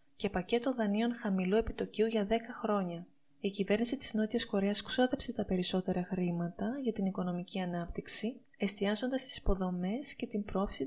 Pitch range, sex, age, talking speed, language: 185-225 Hz, female, 20-39, 150 wpm, Greek